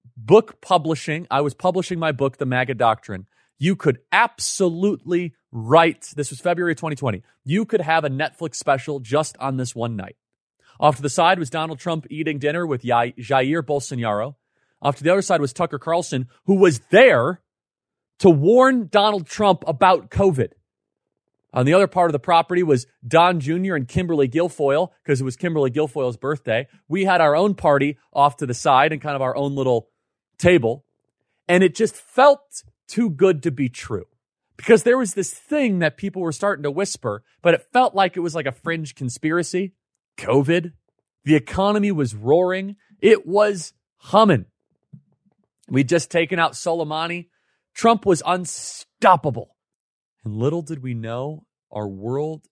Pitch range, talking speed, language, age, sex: 130-180 Hz, 165 wpm, English, 30-49, male